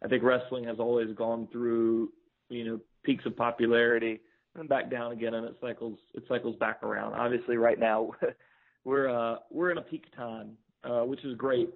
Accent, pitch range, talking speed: American, 115-140 Hz, 190 wpm